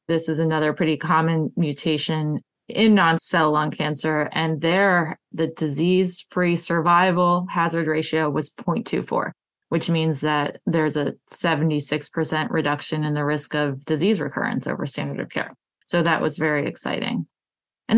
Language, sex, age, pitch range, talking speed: English, female, 20-39, 160-225 Hz, 145 wpm